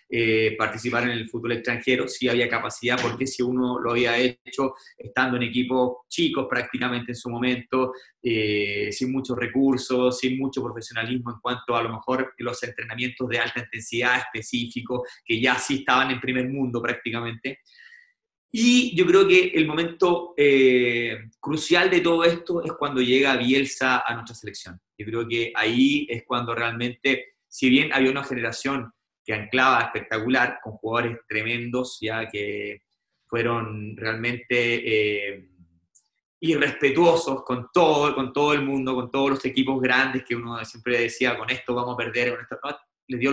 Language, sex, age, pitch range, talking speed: Spanish, male, 30-49, 115-135 Hz, 160 wpm